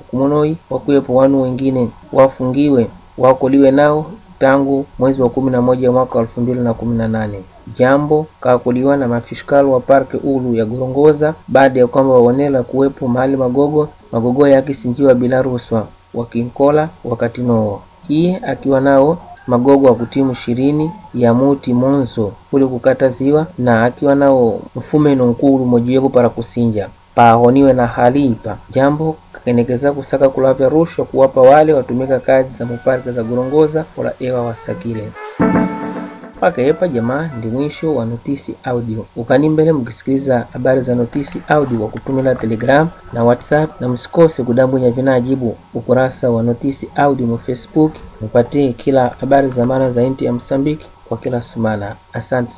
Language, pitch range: Portuguese, 120-140 Hz